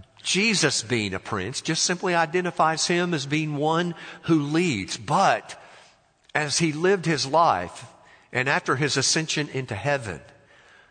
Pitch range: 110-150 Hz